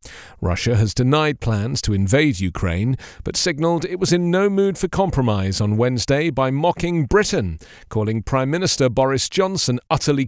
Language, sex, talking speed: English, male, 160 wpm